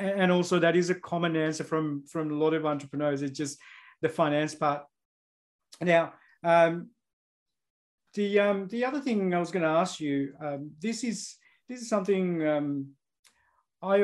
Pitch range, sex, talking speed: 160-190 Hz, male, 165 wpm